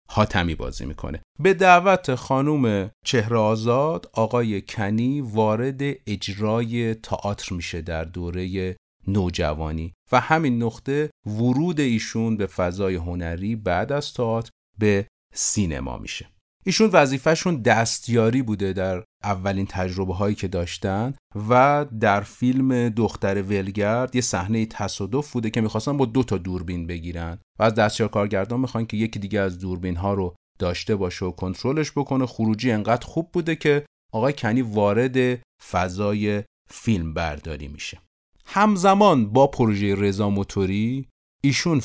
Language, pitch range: Persian, 95-120 Hz